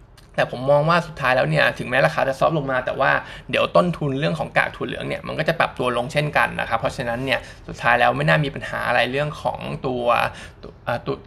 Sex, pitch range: male, 125-155 Hz